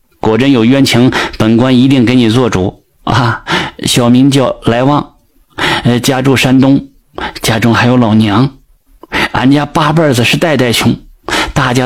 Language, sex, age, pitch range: Chinese, male, 50-69, 120-150 Hz